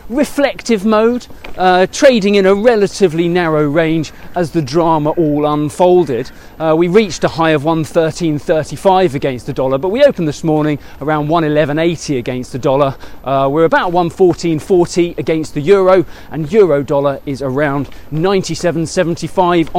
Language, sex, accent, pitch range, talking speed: English, male, British, 150-195 Hz, 145 wpm